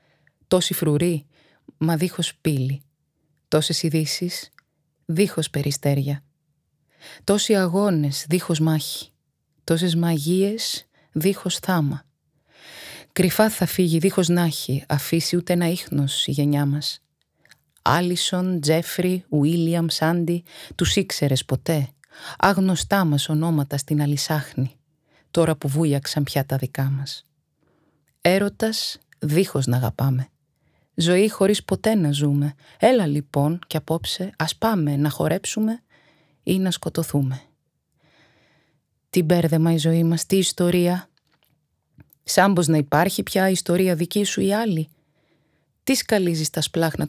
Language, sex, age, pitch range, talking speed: Greek, female, 30-49, 150-175 Hz, 110 wpm